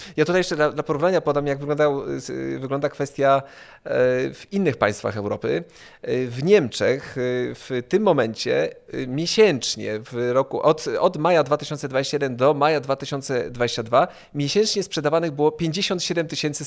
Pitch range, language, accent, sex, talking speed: 130-170 Hz, Polish, native, male, 120 wpm